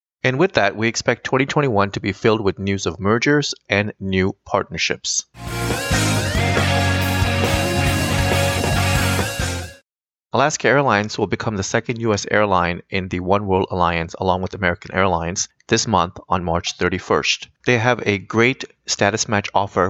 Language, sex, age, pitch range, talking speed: English, male, 30-49, 90-110 Hz, 135 wpm